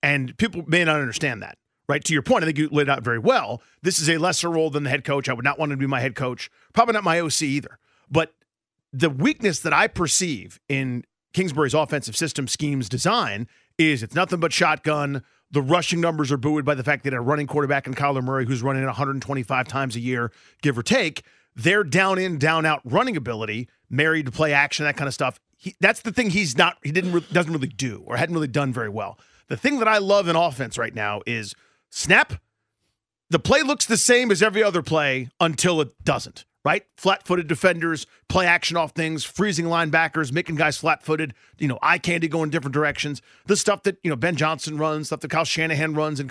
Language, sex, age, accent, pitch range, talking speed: English, male, 40-59, American, 140-175 Hz, 220 wpm